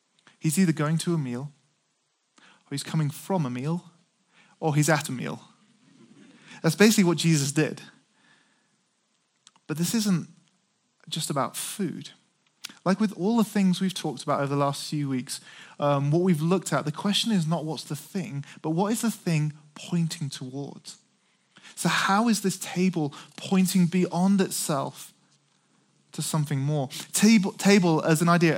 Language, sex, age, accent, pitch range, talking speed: English, male, 20-39, British, 150-185 Hz, 155 wpm